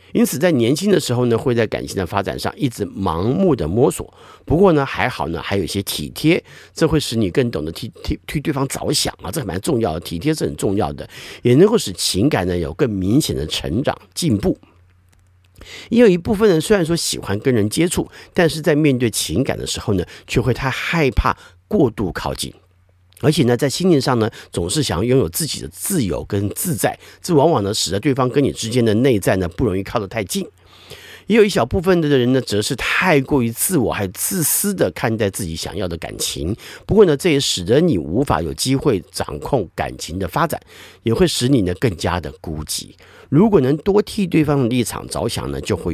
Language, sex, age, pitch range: Chinese, male, 50-69, 90-150 Hz